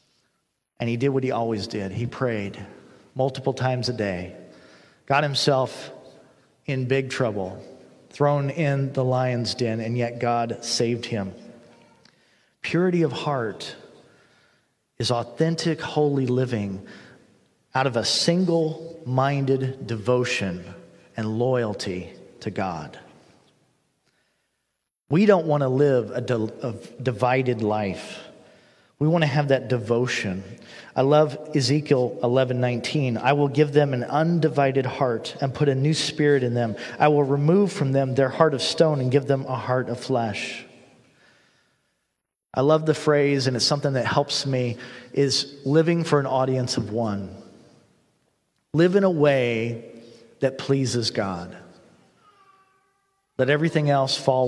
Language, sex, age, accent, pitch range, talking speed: English, male, 40-59, American, 120-145 Hz, 135 wpm